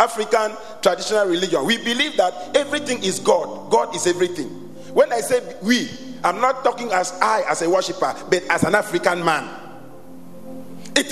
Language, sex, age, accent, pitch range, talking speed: English, male, 40-59, Nigerian, 190-280 Hz, 160 wpm